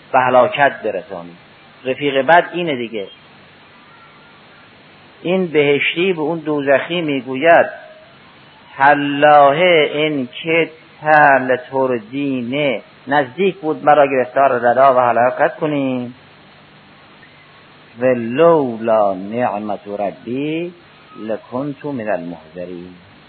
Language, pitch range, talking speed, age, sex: Persian, 125-160 Hz, 80 wpm, 50-69, male